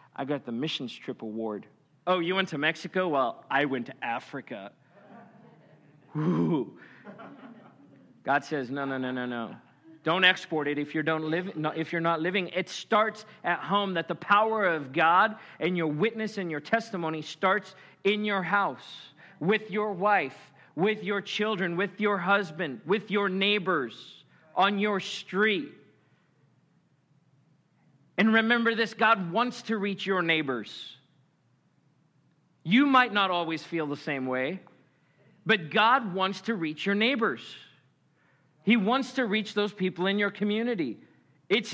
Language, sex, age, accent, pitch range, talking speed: English, male, 40-59, American, 155-210 Hz, 150 wpm